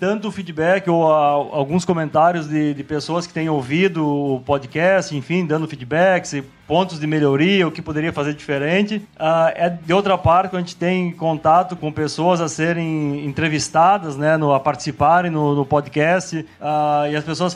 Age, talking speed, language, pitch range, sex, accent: 30-49, 155 wpm, Portuguese, 155-190 Hz, male, Brazilian